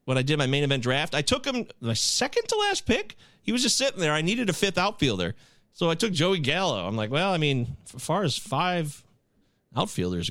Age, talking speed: 30-49, 235 wpm